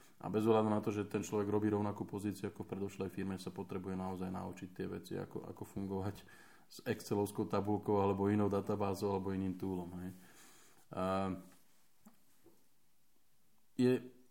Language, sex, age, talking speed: Slovak, male, 20-39, 145 wpm